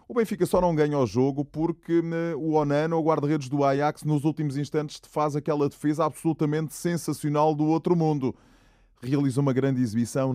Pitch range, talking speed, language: 110-150 Hz, 170 wpm, Portuguese